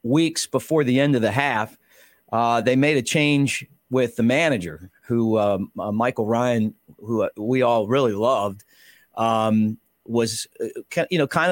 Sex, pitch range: male, 115-145 Hz